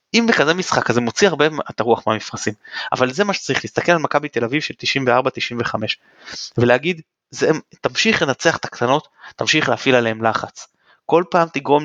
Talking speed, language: 165 wpm, Hebrew